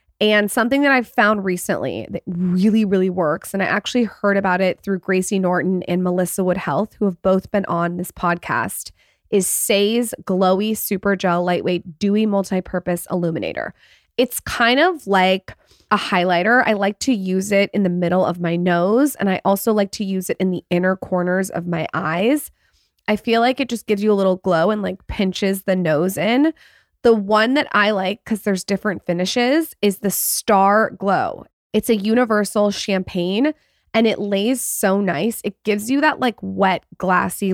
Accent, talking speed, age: American, 185 wpm, 20-39